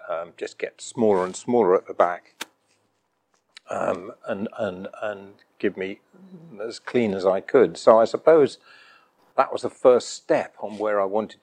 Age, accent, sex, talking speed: 50-69, British, male, 170 wpm